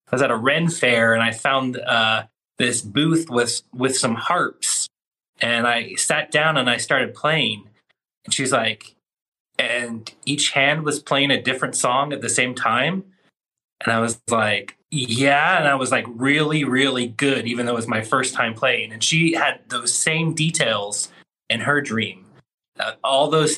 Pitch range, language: 115-155 Hz, English